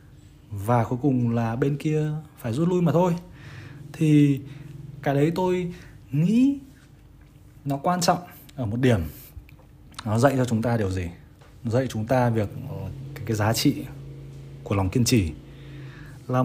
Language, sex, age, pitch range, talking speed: Vietnamese, male, 20-39, 120-150 Hz, 150 wpm